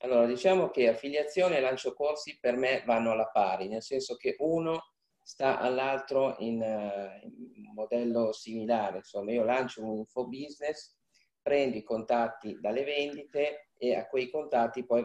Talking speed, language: 150 wpm, Italian